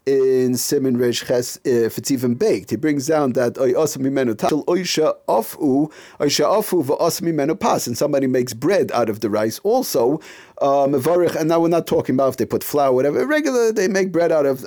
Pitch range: 130-165 Hz